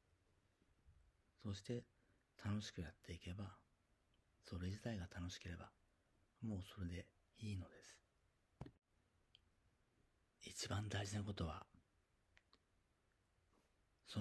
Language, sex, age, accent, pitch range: Japanese, male, 40-59, native, 90-110 Hz